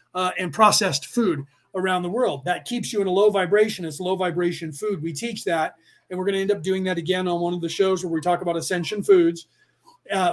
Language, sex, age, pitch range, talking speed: English, male, 30-49, 170-195 Hz, 245 wpm